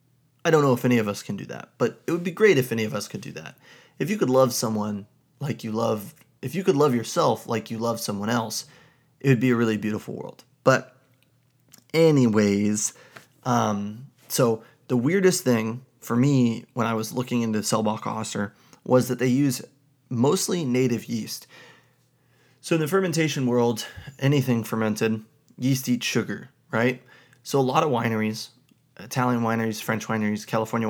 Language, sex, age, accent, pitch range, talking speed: English, male, 30-49, American, 110-130 Hz, 175 wpm